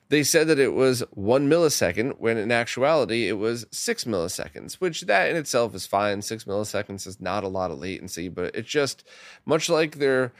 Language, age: English, 20-39